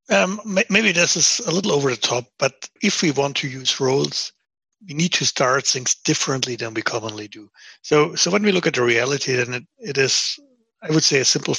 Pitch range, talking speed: 125-160 Hz, 225 wpm